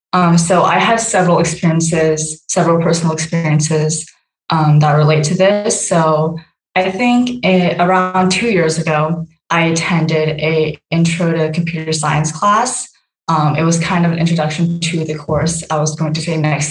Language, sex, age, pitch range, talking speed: English, female, 20-39, 155-175 Hz, 160 wpm